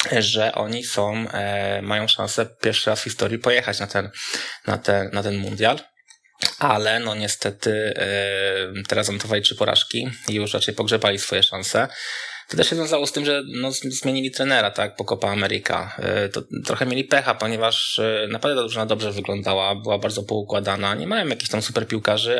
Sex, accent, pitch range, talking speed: male, native, 100-115 Hz, 170 wpm